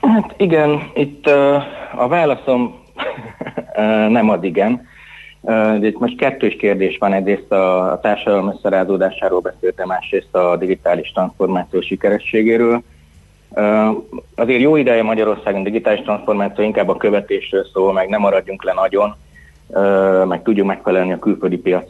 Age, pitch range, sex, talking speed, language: 30-49, 90-110 Hz, male, 130 wpm, Hungarian